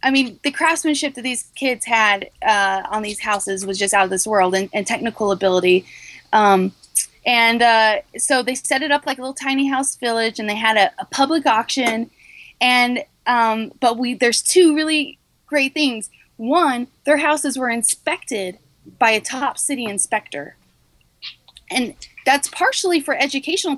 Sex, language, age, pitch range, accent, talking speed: female, English, 20-39, 215-285 Hz, American, 170 wpm